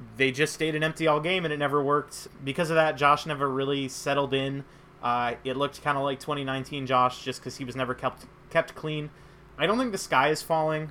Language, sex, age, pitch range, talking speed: English, male, 30-49, 130-155 Hz, 230 wpm